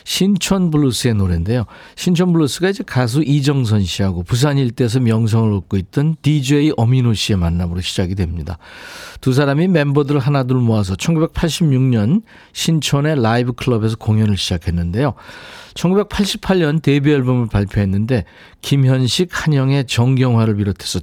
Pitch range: 105-150 Hz